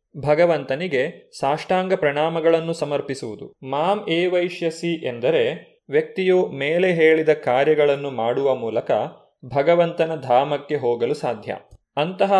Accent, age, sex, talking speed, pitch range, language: native, 30-49, male, 90 wpm, 140-175 Hz, Kannada